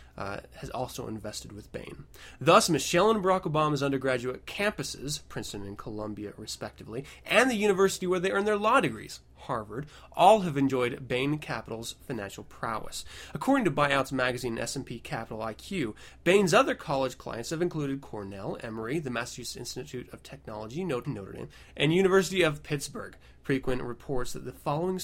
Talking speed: 160 wpm